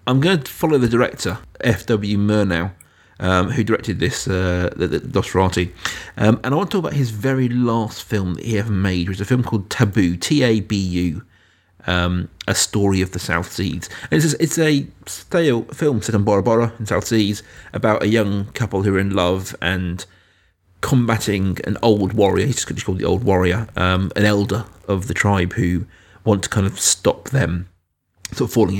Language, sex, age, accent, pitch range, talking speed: English, male, 30-49, British, 95-115 Hz, 195 wpm